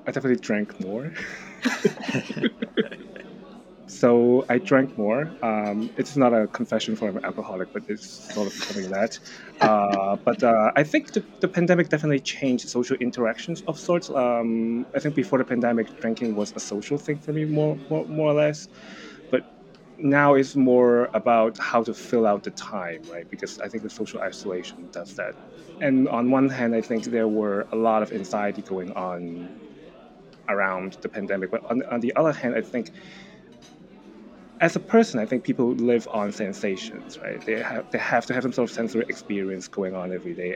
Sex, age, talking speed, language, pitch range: male, 30-49, 185 wpm, English, 105-140 Hz